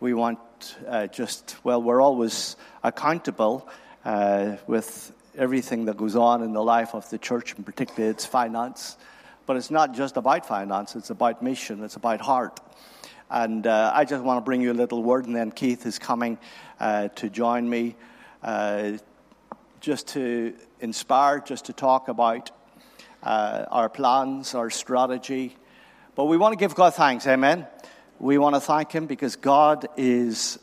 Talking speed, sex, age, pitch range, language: 170 wpm, male, 50-69, 115-140 Hz, English